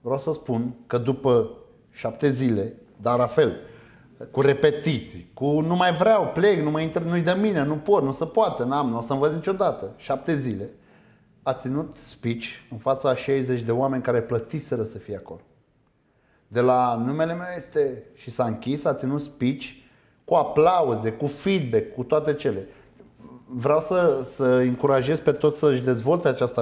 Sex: male